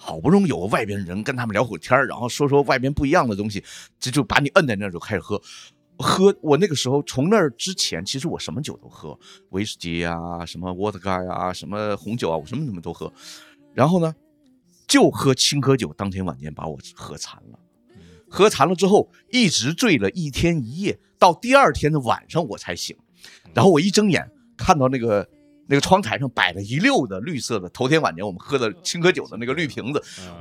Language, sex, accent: Chinese, male, native